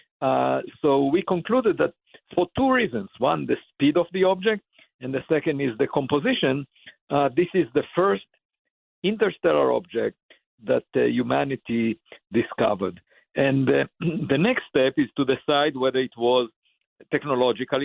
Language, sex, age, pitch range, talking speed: English, male, 50-69, 120-155 Hz, 145 wpm